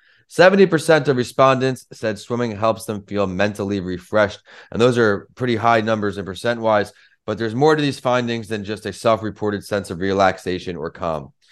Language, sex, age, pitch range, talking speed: English, male, 30-49, 95-120 Hz, 165 wpm